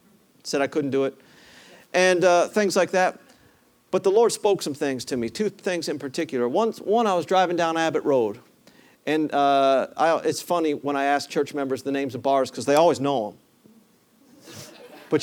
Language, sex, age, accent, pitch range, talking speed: English, male, 50-69, American, 145-205 Hz, 195 wpm